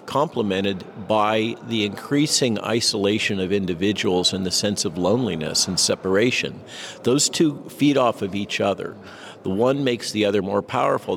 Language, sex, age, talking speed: English, male, 50-69, 150 wpm